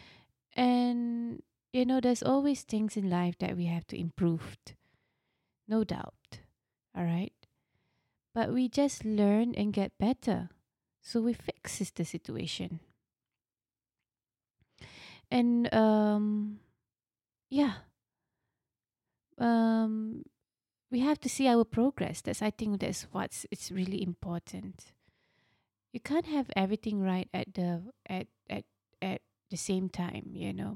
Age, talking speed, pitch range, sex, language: 20-39, 125 wpm, 170-230 Hz, female, English